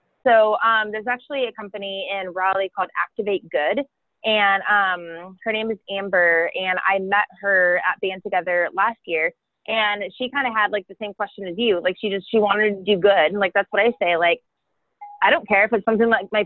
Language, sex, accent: English, female, American